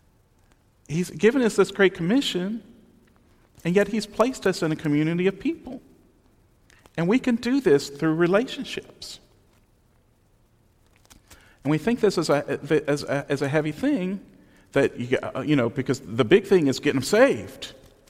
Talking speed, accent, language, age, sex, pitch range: 155 wpm, American, English, 40-59, male, 120-180 Hz